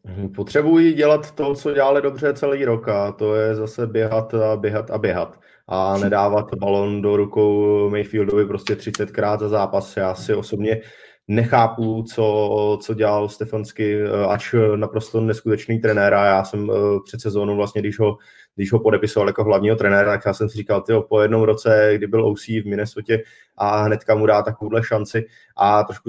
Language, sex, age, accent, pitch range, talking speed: Czech, male, 20-39, native, 105-110 Hz, 170 wpm